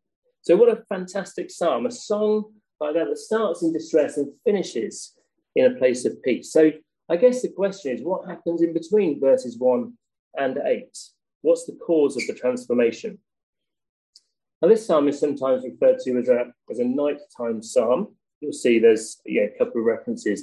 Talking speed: 175 wpm